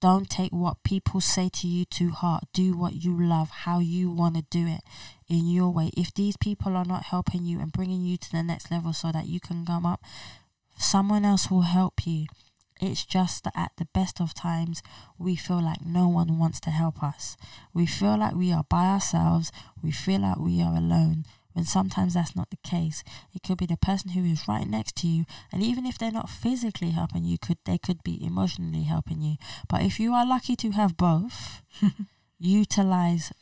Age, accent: 20-39, British